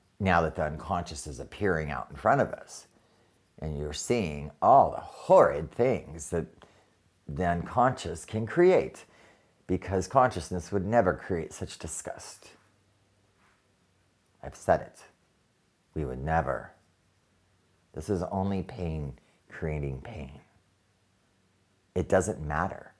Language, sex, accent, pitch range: English, male, American, 85-105 Hz